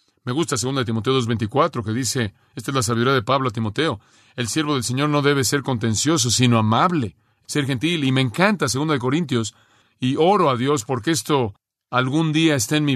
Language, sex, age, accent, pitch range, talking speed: Spanish, male, 40-59, Mexican, 120-155 Hz, 200 wpm